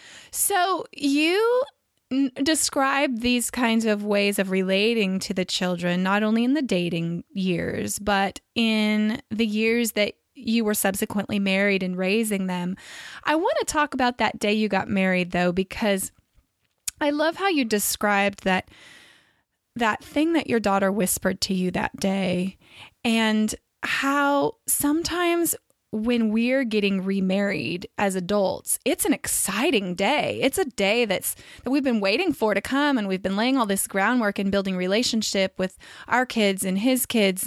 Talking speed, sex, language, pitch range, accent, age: 160 wpm, female, English, 195-250 Hz, American, 20-39